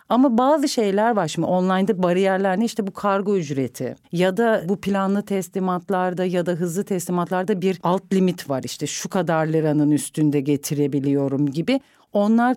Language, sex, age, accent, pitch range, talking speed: Turkish, female, 40-59, native, 180-220 Hz, 155 wpm